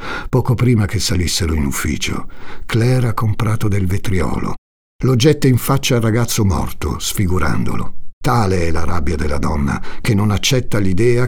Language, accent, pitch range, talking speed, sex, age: Italian, native, 80-110 Hz, 155 wpm, male, 60-79